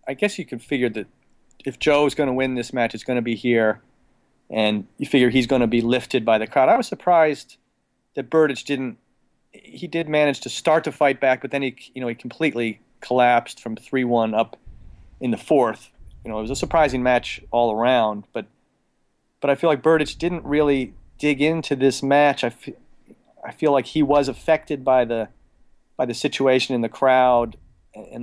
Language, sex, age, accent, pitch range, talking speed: English, male, 40-59, American, 115-140 Hz, 205 wpm